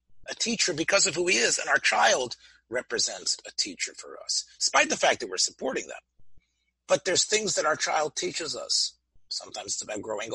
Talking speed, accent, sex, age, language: 195 wpm, American, male, 40-59, English